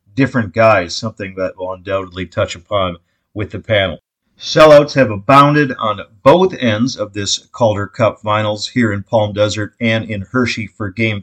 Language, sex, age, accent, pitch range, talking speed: English, male, 40-59, American, 100-120 Hz, 165 wpm